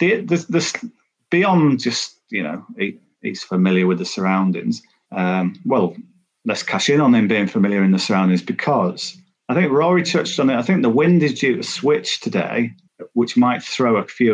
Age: 40-59